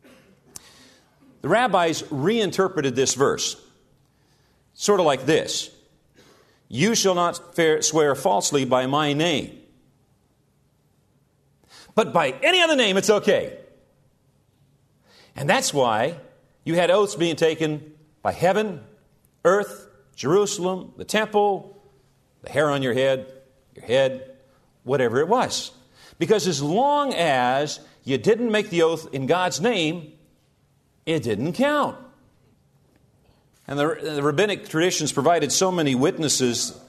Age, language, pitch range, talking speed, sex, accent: 50-69, English, 130-170 Hz, 115 wpm, male, American